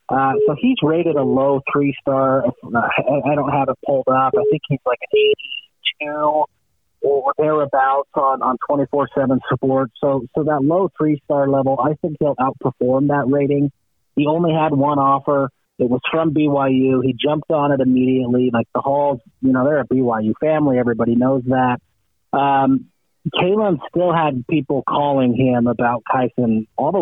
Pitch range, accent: 125-145 Hz, American